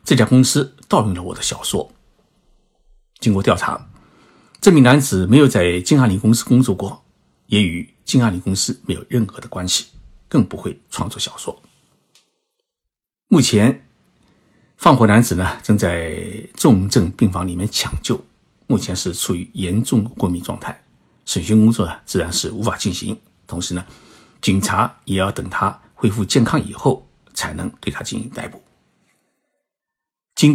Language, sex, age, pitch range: Chinese, male, 60-79, 95-130 Hz